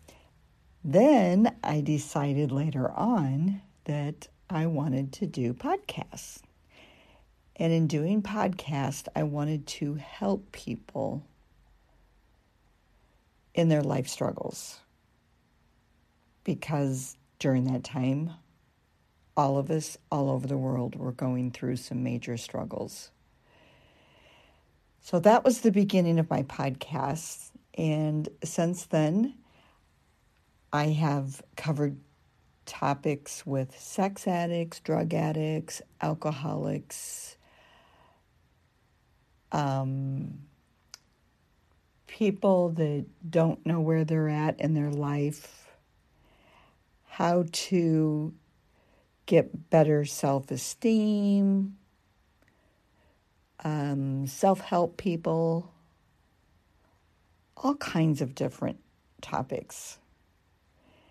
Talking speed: 85 wpm